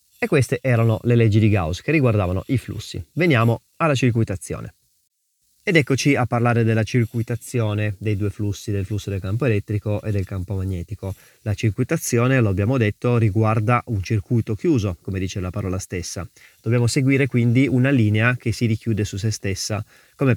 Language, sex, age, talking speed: Italian, male, 20-39, 170 wpm